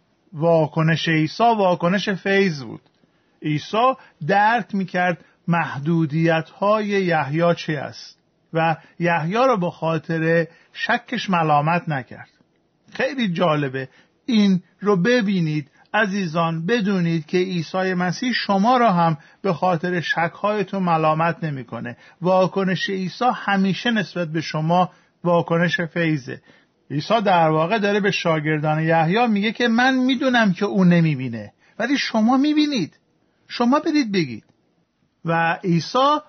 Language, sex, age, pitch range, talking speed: Persian, male, 50-69, 165-210 Hz, 115 wpm